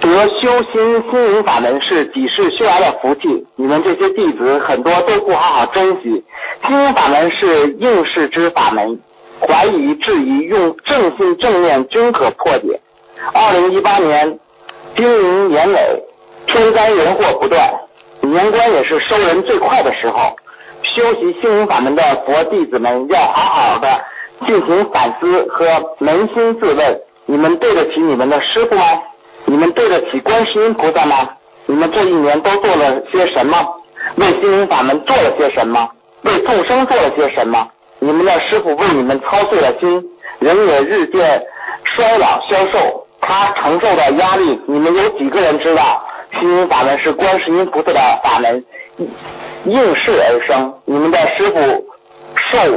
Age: 50-69